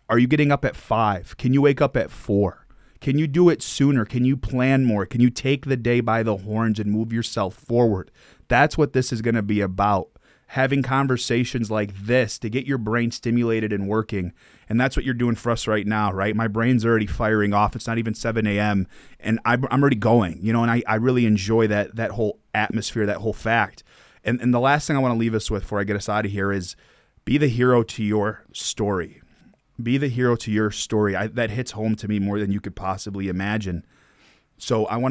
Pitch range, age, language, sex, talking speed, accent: 105-125 Hz, 30-49, English, male, 230 wpm, American